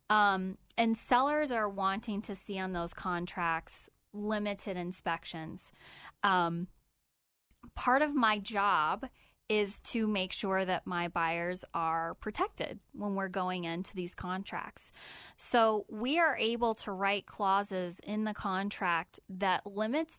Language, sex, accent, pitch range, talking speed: English, female, American, 180-215 Hz, 130 wpm